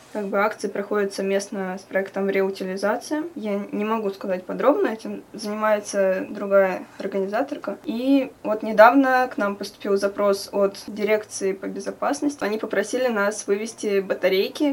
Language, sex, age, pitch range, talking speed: Russian, female, 20-39, 195-220 Hz, 135 wpm